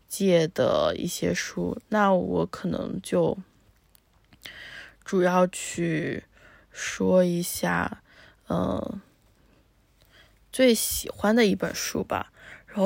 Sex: female